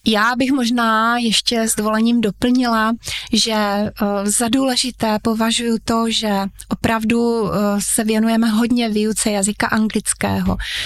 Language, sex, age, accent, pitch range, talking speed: Czech, female, 20-39, native, 205-230 Hz, 110 wpm